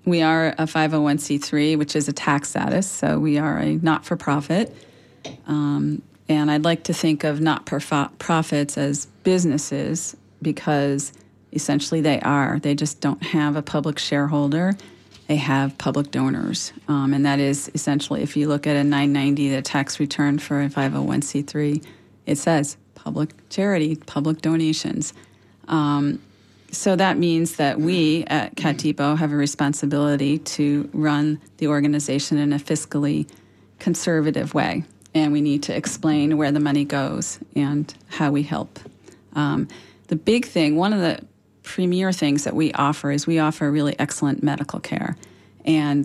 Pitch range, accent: 145-160 Hz, American